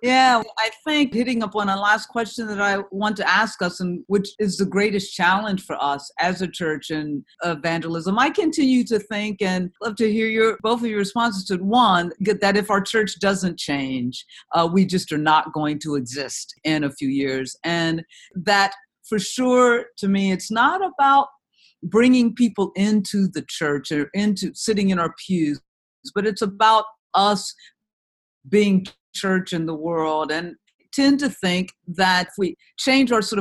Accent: American